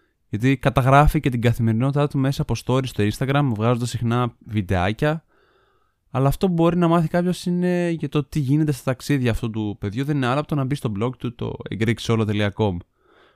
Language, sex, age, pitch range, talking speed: Greek, male, 20-39, 110-145 Hz, 195 wpm